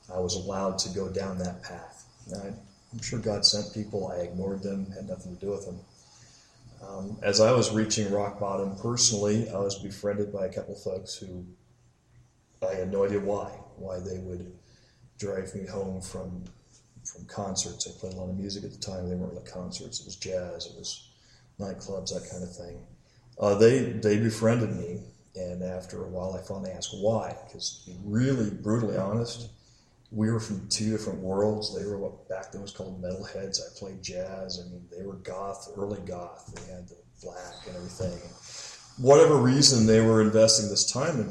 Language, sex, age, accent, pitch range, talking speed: English, male, 40-59, American, 95-110 Hz, 195 wpm